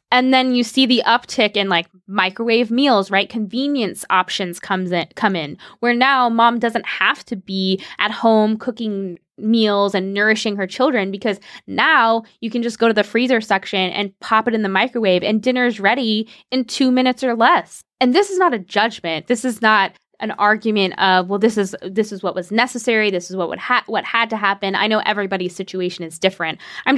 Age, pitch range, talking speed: 10-29, 195-245 Hz, 205 wpm